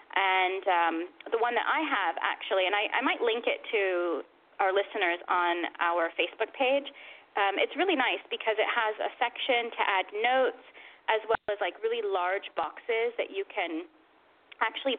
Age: 20-39